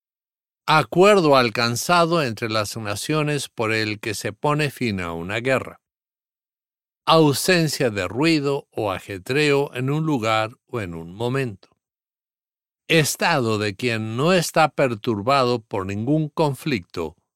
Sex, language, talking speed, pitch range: male, English, 120 wpm, 110-145 Hz